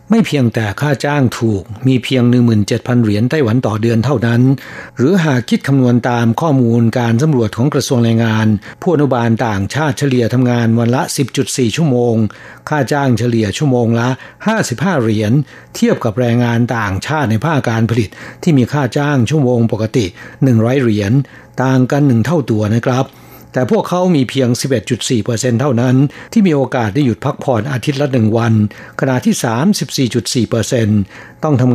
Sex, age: male, 60-79